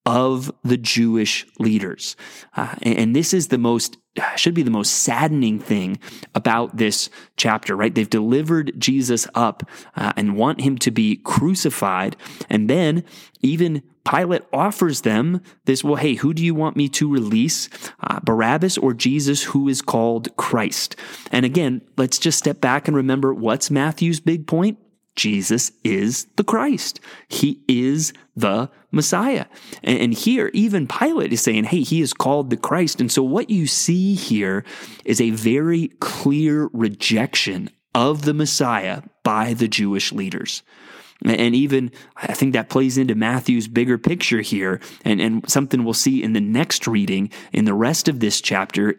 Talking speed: 160 wpm